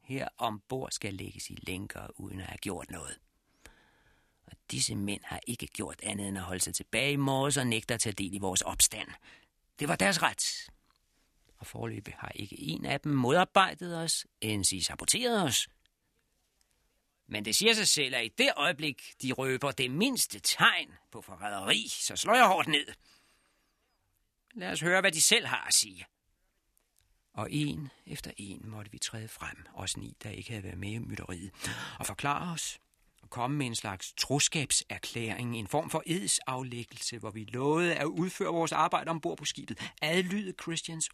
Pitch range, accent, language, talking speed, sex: 105-175 Hz, native, Danish, 175 wpm, male